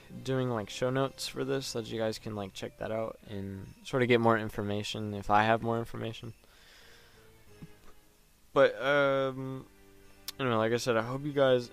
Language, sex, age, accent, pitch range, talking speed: English, male, 20-39, American, 105-120 Hz, 185 wpm